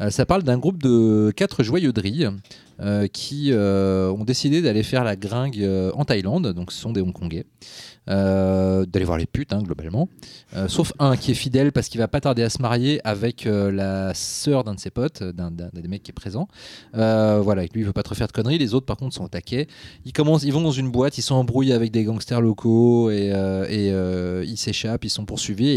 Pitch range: 100-130 Hz